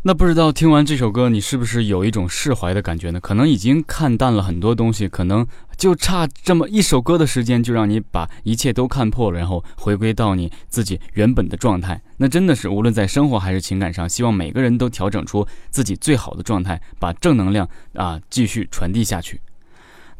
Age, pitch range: 20-39, 100-145 Hz